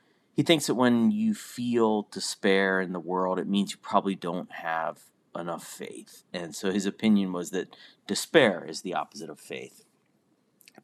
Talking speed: 170 wpm